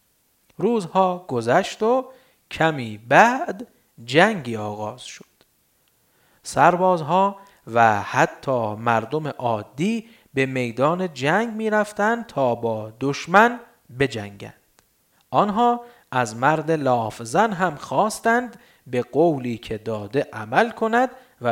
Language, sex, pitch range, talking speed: Persian, male, 120-205 Hz, 95 wpm